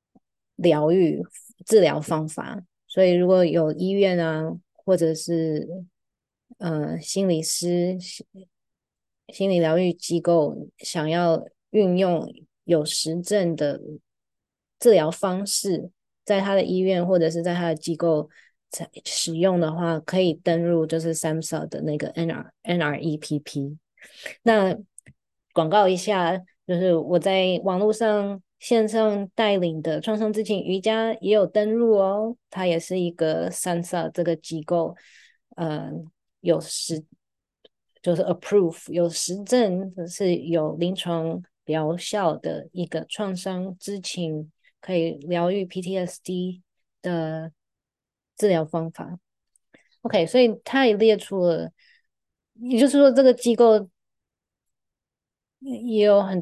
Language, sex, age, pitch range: Chinese, female, 20-39, 165-200 Hz